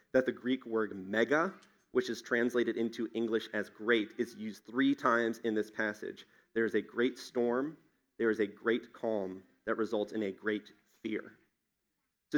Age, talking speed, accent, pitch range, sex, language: 30-49, 175 wpm, American, 105-130 Hz, male, English